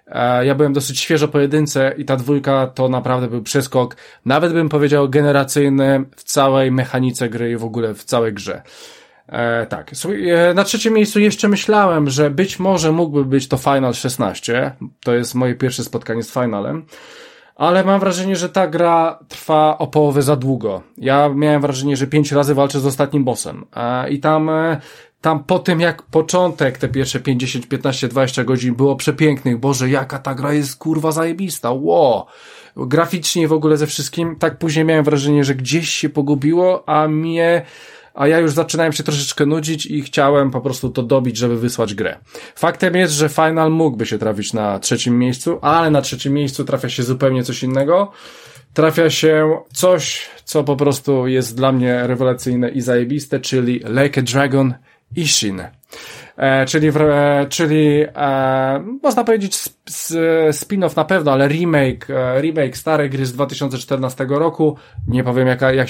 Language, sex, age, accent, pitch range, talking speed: Polish, male, 20-39, native, 130-160 Hz, 165 wpm